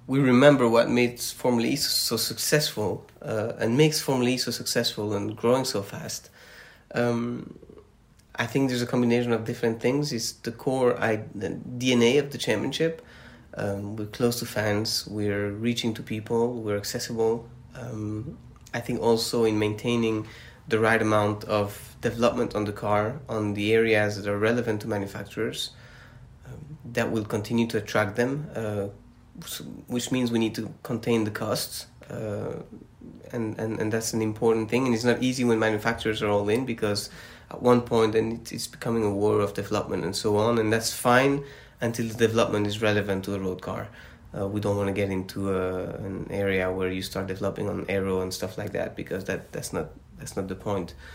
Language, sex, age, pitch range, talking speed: English, male, 30-49, 105-120 Hz, 185 wpm